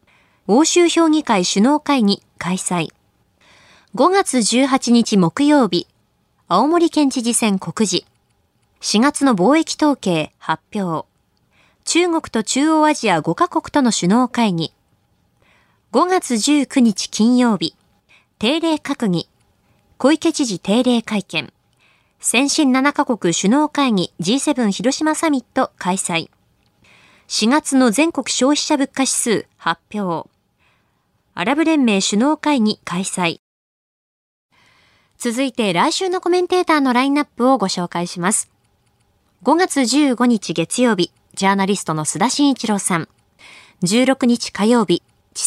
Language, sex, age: Japanese, female, 20-39